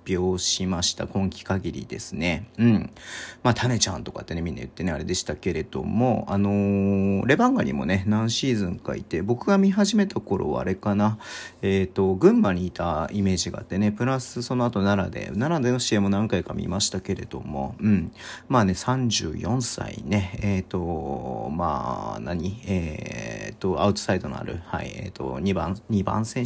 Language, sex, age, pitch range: Japanese, male, 40-59, 90-105 Hz